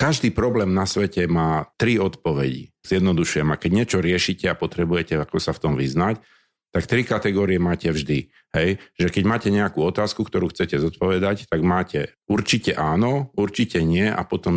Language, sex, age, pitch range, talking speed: Slovak, male, 50-69, 85-110 Hz, 160 wpm